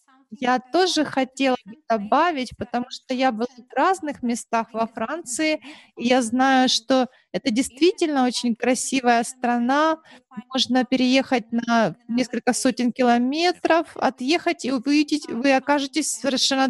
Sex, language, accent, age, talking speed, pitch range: female, Russian, native, 30-49, 125 wpm, 240-285 Hz